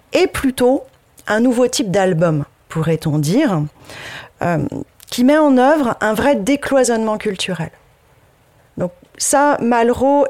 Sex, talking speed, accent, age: female, 115 wpm, French, 30-49